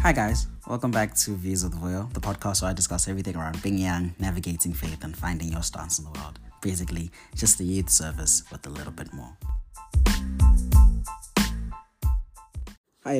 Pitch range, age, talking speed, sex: 80-100 Hz, 20-39, 175 wpm, male